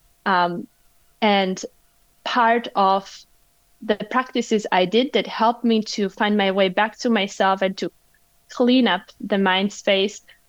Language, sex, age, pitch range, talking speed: English, female, 20-39, 185-230 Hz, 145 wpm